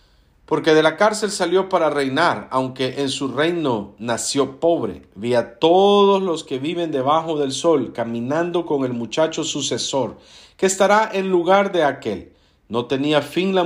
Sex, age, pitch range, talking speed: male, 50-69, 120-175 Hz, 165 wpm